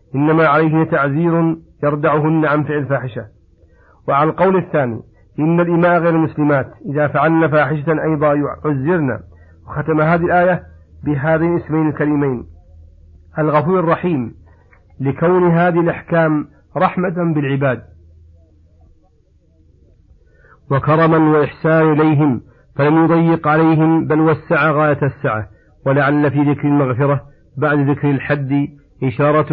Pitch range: 130-155 Hz